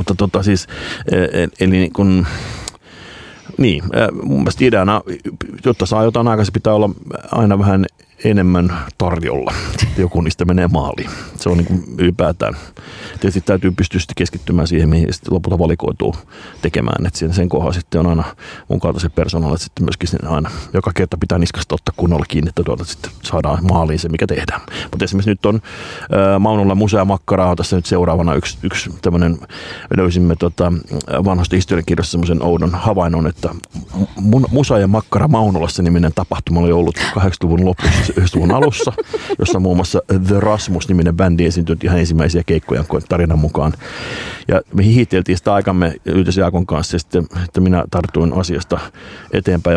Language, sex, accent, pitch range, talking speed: Finnish, male, native, 85-95 Hz, 150 wpm